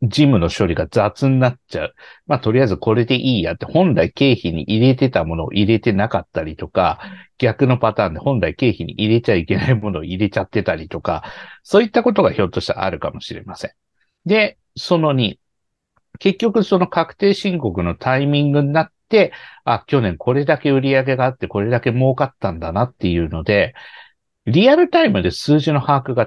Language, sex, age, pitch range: Japanese, male, 60-79, 105-160 Hz